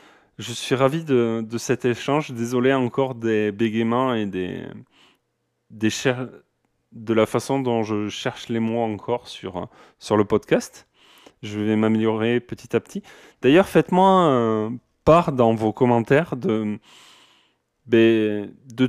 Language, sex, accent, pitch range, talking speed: French, male, French, 110-135 Hz, 125 wpm